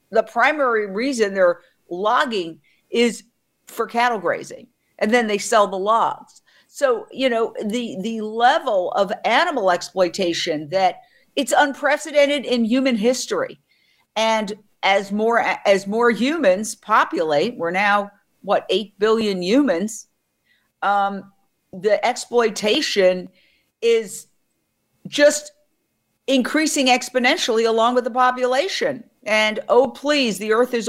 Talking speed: 115 wpm